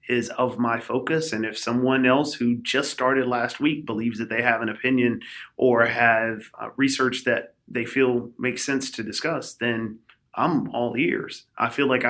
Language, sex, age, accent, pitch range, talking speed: English, male, 30-49, American, 110-130 Hz, 185 wpm